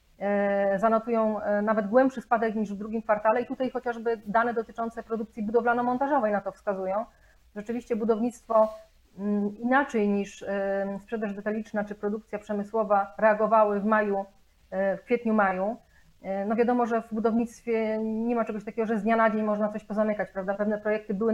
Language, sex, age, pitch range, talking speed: Polish, female, 30-49, 210-235 Hz, 150 wpm